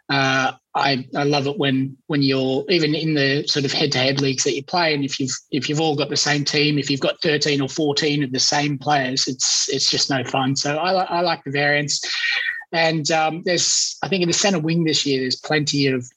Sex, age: male, 20-39